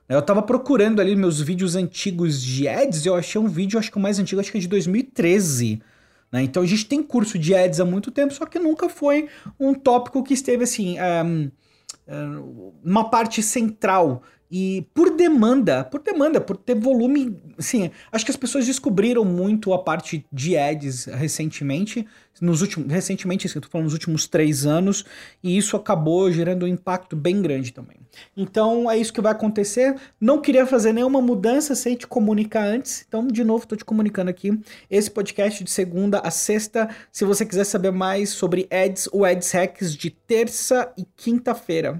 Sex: male